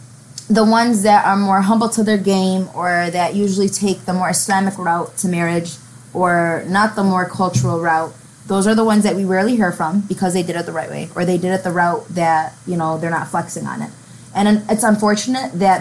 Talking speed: 225 wpm